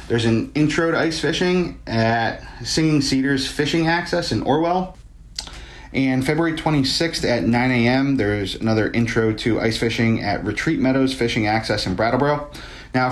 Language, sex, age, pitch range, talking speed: English, male, 30-49, 115-135 Hz, 150 wpm